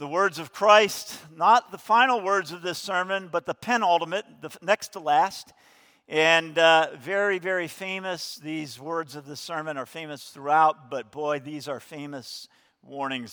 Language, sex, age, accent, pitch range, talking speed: English, male, 50-69, American, 150-190 Hz, 165 wpm